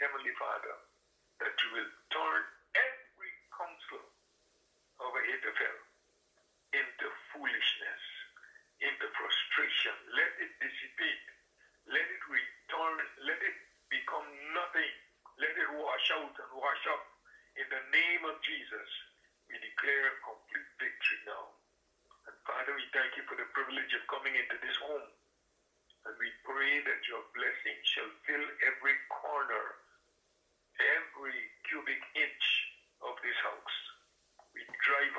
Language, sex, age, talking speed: English, male, 60-79, 125 wpm